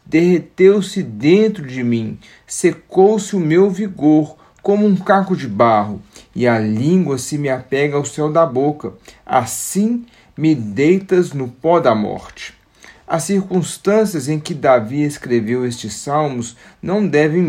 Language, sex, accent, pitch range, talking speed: Portuguese, male, Brazilian, 130-190 Hz, 135 wpm